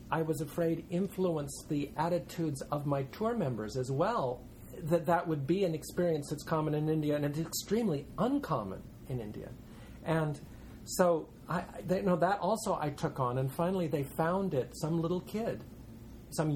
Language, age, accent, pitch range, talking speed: English, 50-69, American, 130-175 Hz, 165 wpm